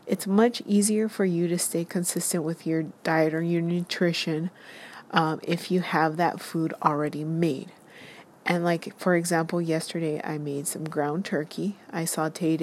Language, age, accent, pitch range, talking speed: English, 30-49, American, 160-185 Hz, 160 wpm